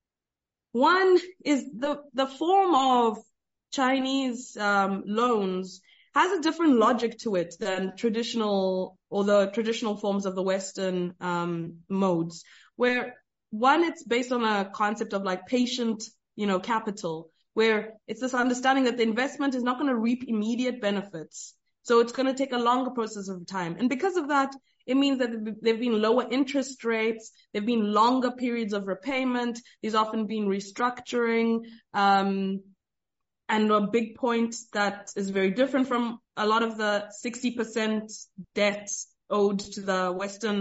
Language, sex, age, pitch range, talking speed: English, female, 20-39, 200-250 Hz, 160 wpm